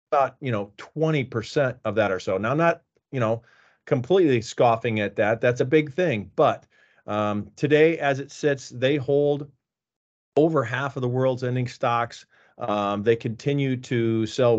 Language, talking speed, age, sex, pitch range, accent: English, 170 wpm, 40-59, male, 110-140 Hz, American